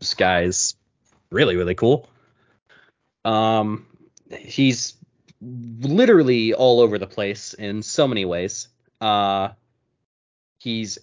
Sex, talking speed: male, 100 wpm